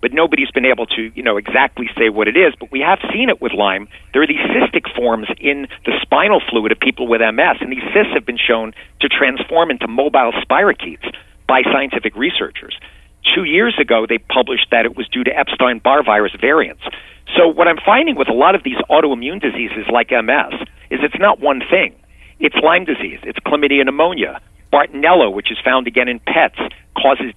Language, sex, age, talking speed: English, male, 50-69, 200 wpm